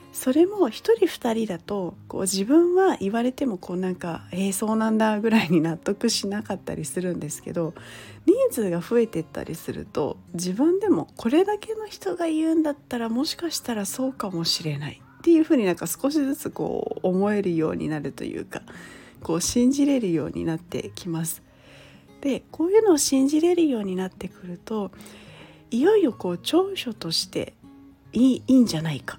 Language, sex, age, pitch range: Japanese, female, 40-59, 175-275 Hz